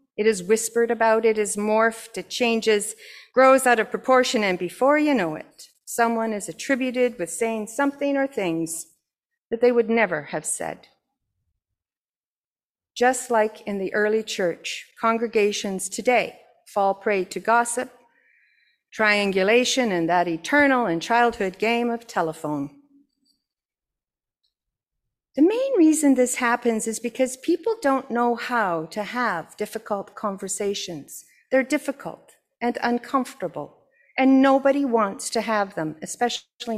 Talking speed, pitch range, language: 130 wpm, 200-265 Hz, English